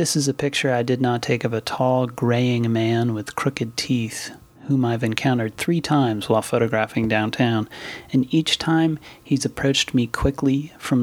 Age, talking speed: 30-49, 175 wpm